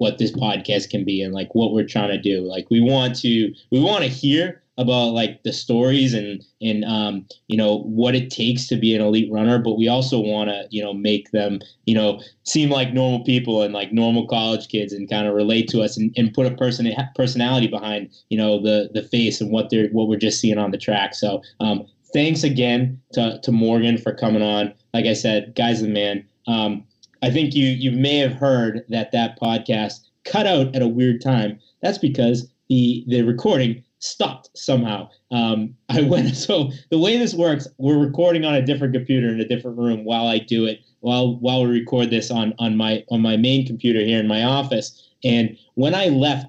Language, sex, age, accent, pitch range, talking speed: English, male, 20-39, American, 110-125 Hz, 215 wpm